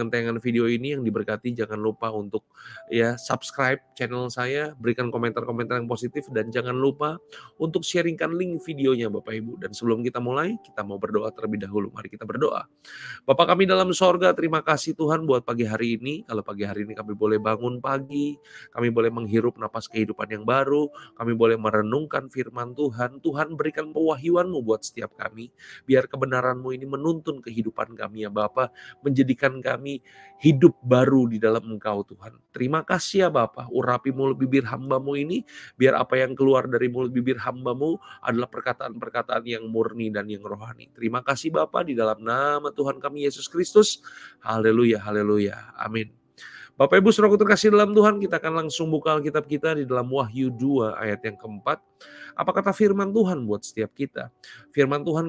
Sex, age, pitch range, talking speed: male, 20-39, 115-160 Hz, 170 wpm